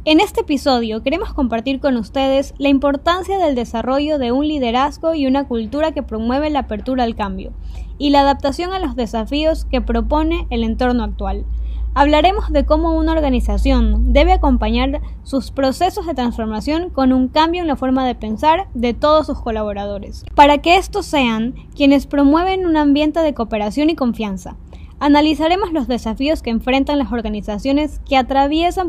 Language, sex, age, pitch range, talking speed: Spanish, female, 10-29, 235-310 Hz, 160 wpm